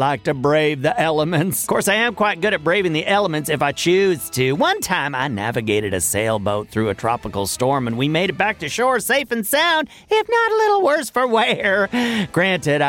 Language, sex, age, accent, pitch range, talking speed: English, male, 40-59, American, 135-225 Hz, 220 wpm